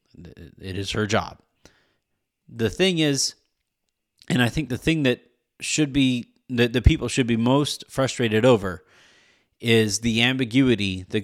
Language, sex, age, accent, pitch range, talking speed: English, male, 30-49, American, 110-155 Hz, 145 wpm